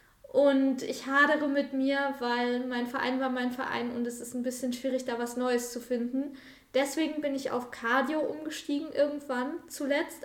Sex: female